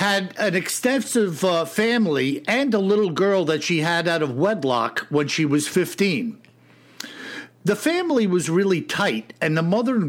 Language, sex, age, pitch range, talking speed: English, male, 60-79, 160-215 Hz, 165 wpm